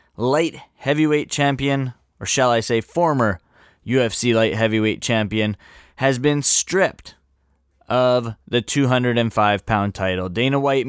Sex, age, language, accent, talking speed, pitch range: male, 20-39, English, American, 115 wpm, 125-155 Hz